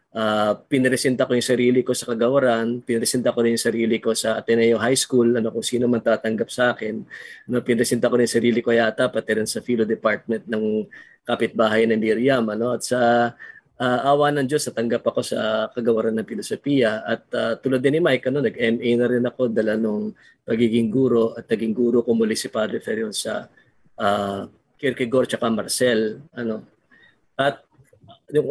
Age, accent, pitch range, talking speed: 20-39, native, 115-135 Hz, 175 wpm